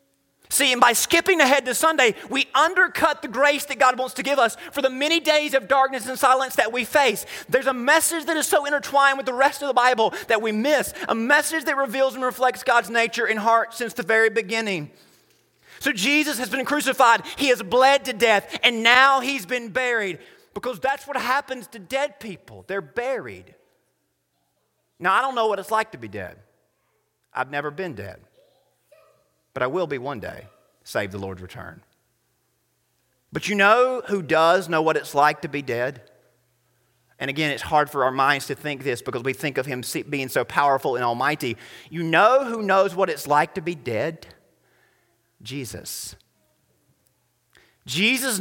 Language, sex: English, male